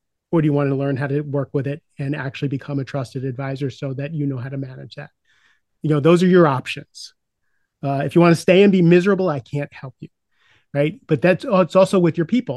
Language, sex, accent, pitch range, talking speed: English, male, American, 140-175 Hz, 255 wpm